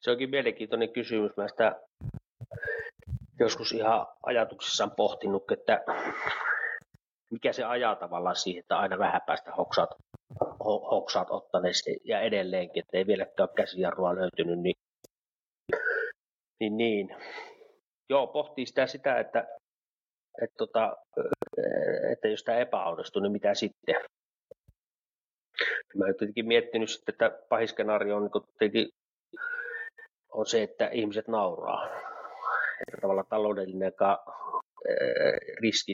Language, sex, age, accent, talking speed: Finnish, male, 30-49, native, 105 wpm